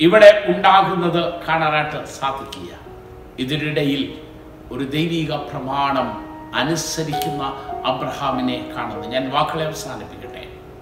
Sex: male